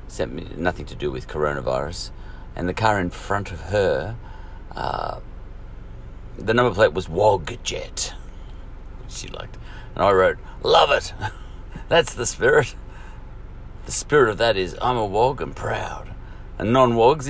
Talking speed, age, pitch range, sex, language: 150 wpm, 50-69, 65-110 Hz, male, English